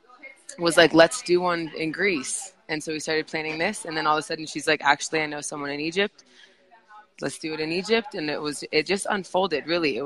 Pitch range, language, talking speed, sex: 140-190 Hz, English, 240 wpm, female